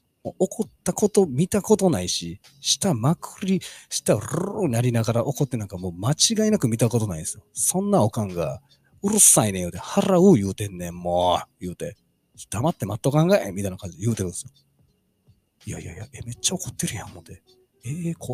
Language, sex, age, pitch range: Japanese, male, 40-59, 100-160 Hz